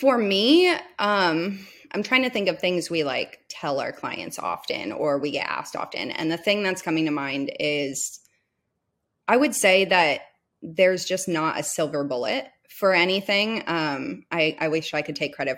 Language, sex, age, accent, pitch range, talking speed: English, female, 20-39, American, 155-195 Hz, 185 wpm